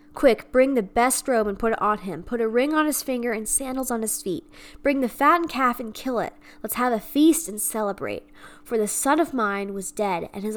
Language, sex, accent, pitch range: English, female, American, 210-280 Hz